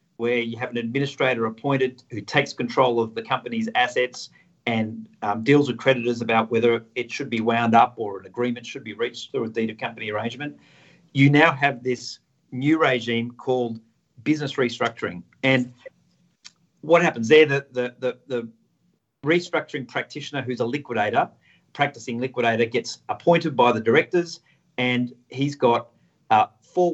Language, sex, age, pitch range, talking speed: English, male, 40-59, 115-145 Hz, 160 wpm